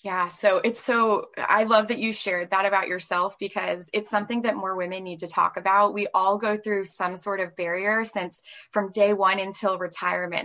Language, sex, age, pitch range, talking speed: English, female, 10-29, 190-240 Hz, 205 wpm